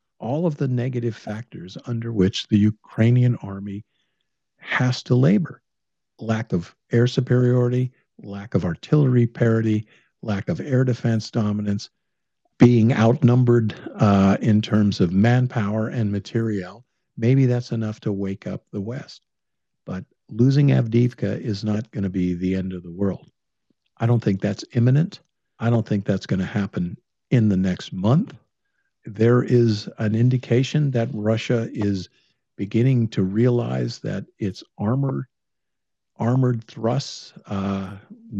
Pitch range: 100-120 Hz